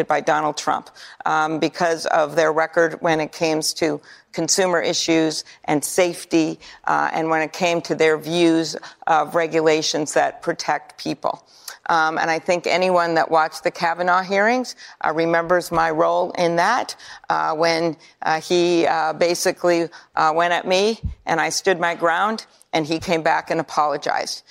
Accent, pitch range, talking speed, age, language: American, 160-175 Hz, 160 wpm, 50-69, English